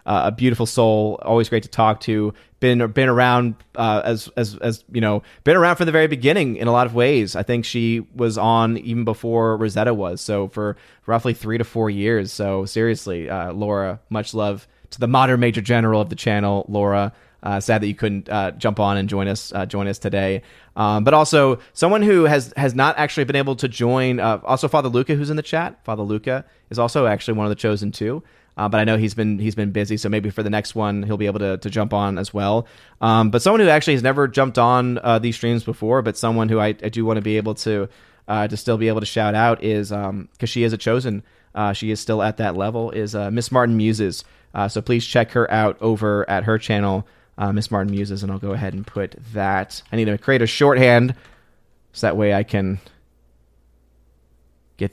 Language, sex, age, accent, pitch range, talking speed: English, male, 30-49, American, 100-120 Hz, 235 wpm